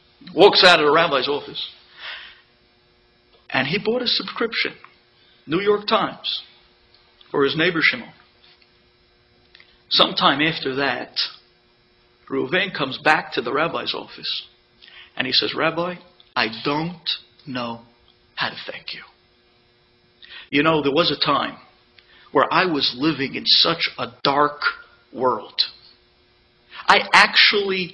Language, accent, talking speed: English, American, 120 wpm